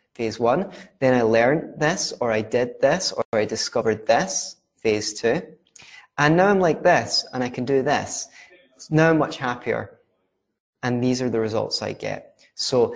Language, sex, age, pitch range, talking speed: English, male, 20-39, 115-135 Hz, 175 wpm